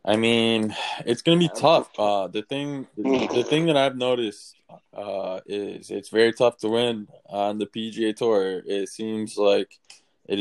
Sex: male